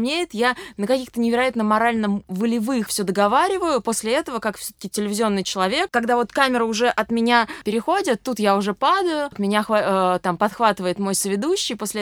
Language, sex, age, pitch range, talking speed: Russian, female, 20-39, 200-265 Hz, 165 wpm